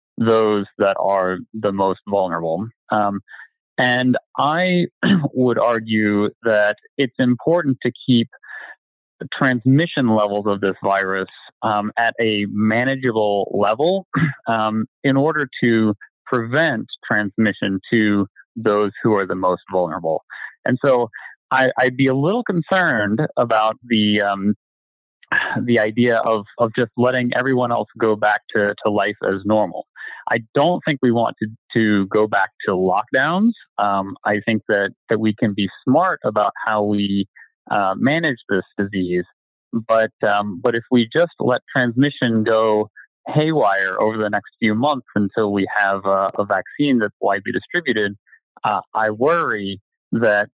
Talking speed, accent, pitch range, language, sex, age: 145 wpm, American, 100-125 Hz, English, male, 30-49